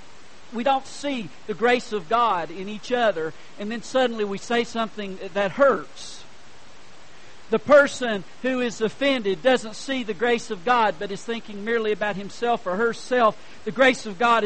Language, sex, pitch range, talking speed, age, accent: English, male, 195-265 Hz, 170 wpm, 50-69, American